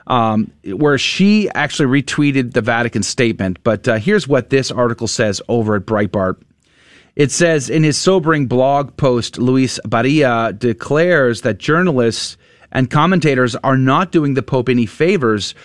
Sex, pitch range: male, 120-150 Hz